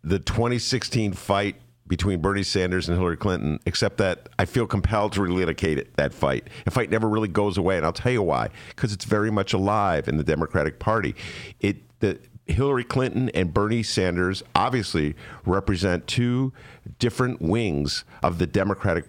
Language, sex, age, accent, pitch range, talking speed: English, male, 50-69, American, 85-120 Hz, 165 wpm